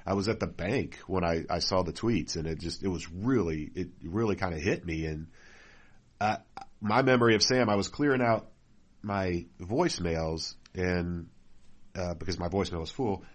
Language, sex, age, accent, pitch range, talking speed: English, male, 40-59, American, 90-100 Hz, 190 wpm